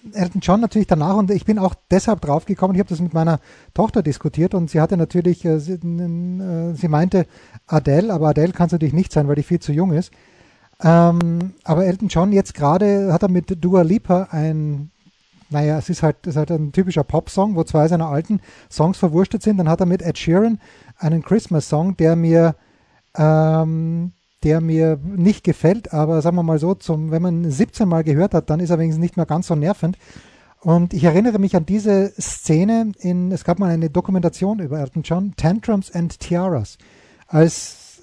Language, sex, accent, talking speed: German, male, German, 205 wpm